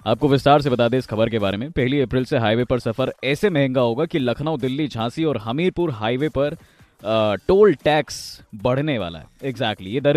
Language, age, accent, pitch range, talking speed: Hindi, 20-39, native, 120-155 Hz, 210 wpm